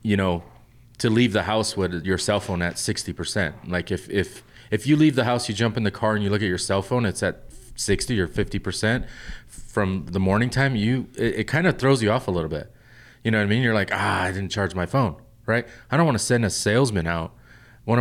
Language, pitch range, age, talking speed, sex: English, 95-115 Hz, 30-49, 245 wpm, male